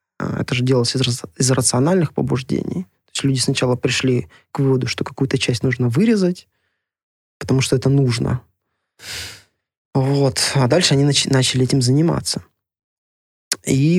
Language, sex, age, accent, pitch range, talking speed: Russian, male, 20-39, native, 125-145 Hz, 130 wpm